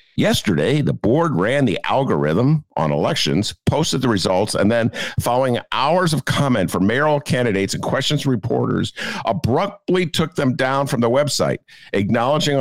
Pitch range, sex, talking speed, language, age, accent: 120-160 Hz, male, 150 wpm, English, 50-69, American